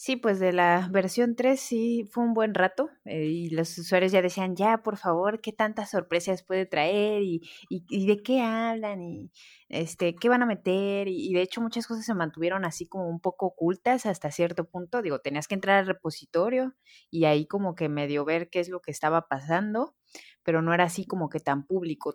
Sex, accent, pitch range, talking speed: female, Mexican, 165-210 Hz, 215 wpm